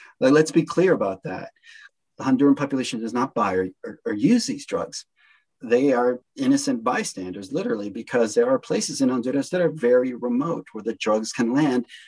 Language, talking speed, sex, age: English, 185 wpm, male, 40-59